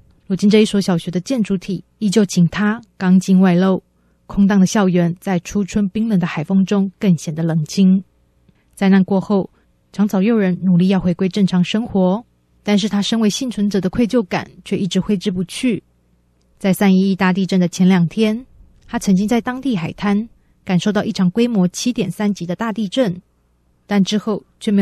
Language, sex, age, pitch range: Chinese, female, 20-39, 180-210 Hz